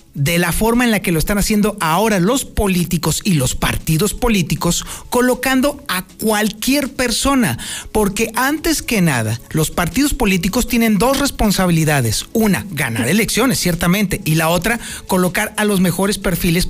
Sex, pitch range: male, 165-230 Hz